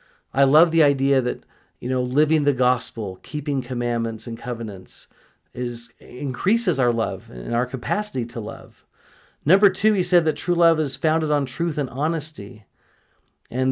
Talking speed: 160 wpm